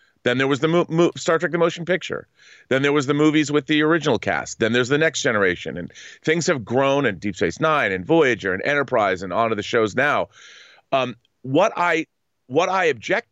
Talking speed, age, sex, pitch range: 205 wpm, 40-59, male, 115-155 Hz